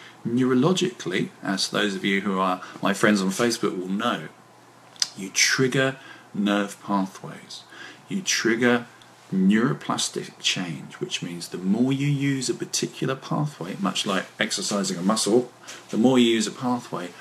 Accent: British